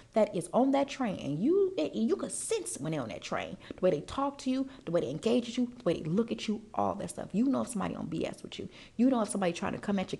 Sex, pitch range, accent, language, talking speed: female, 210-285 Hz, American, English, 300 wpm